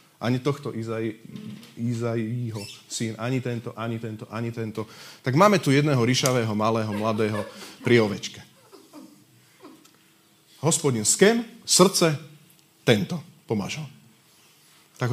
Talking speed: 105 wpm